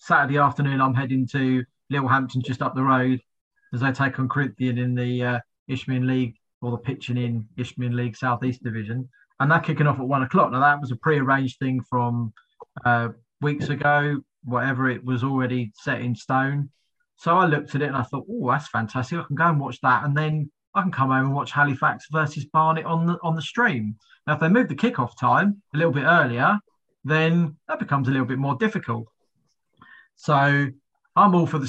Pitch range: 130-155 Hz